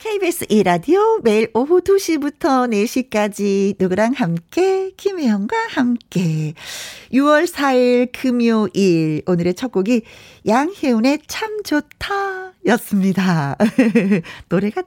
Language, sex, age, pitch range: Korean, female, 40-59, 200-295 Hz